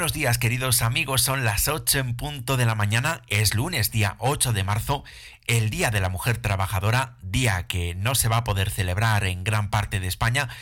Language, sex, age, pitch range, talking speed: Spanish, male, 30-49, 100-125 Hz, 210 wpm